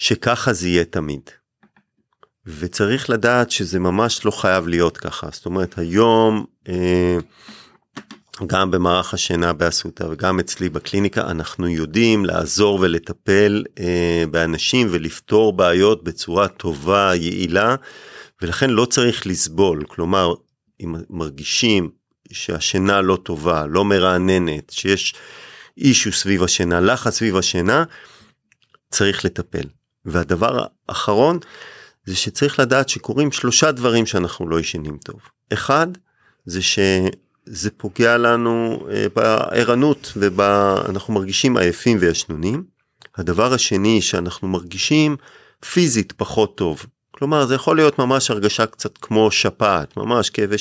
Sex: male